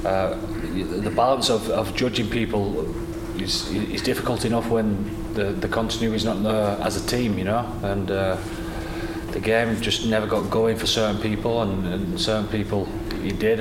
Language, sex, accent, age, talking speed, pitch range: English, male, British, 30-49, 175 wpm, 100-110 Hz